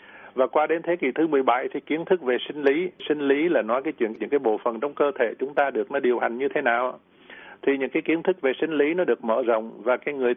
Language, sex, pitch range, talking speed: Vietnamese, male, 120-150 Hz, 290 wpm